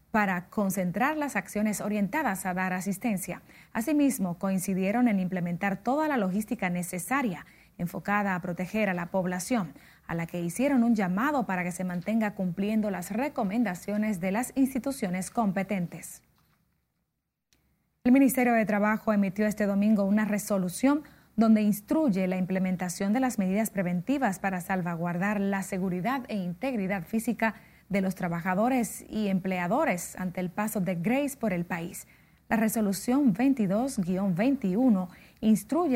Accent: American